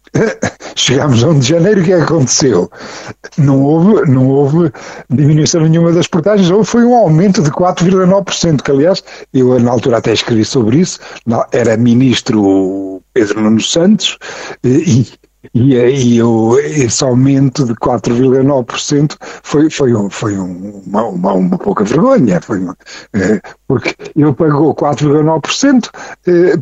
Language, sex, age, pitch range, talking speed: Portuguese, male, 50-69, 135-185 Hz, 125 wpm